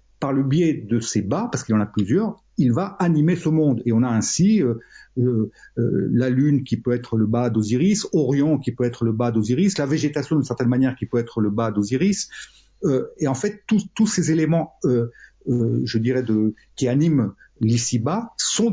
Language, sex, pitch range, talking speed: French, male, 115-160 Hz, 215 wpm